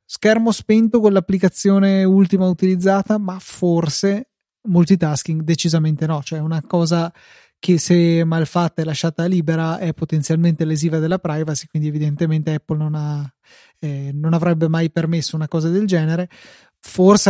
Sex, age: male, 20-39